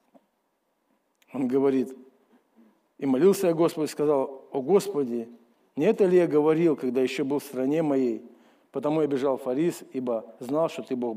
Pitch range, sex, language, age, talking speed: 125-155 Hz, male, Russian, 50-69, 155 wpm